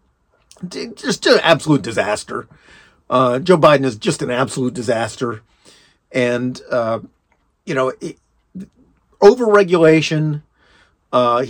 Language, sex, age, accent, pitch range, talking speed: English, male, 40-59, American, 135-185 Hz, 100 wpm